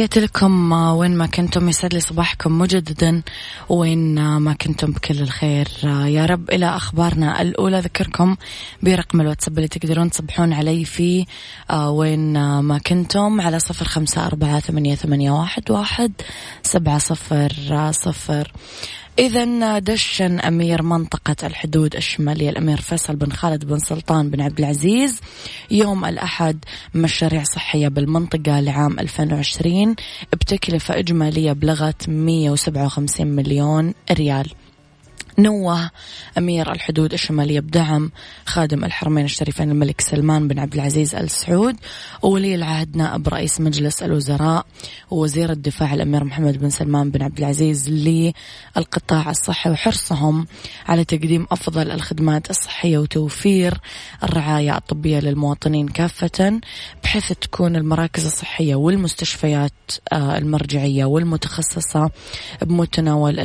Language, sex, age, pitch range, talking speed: Arabic, female, 20-39, 150-170 Hz, 110 wpm